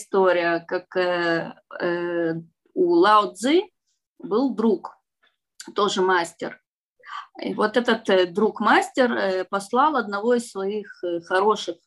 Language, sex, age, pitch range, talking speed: Russian, female, 20-39, 185-275 Hz, 90 wpm